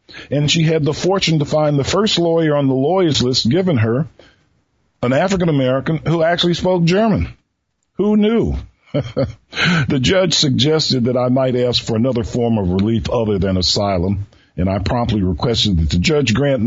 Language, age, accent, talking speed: English, 50-69, American, 170 wpm